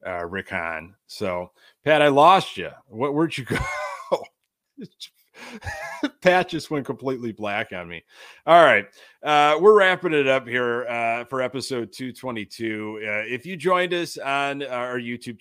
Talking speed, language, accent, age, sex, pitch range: 150 wpm, English, American, 30-49, male, 110-145 Hz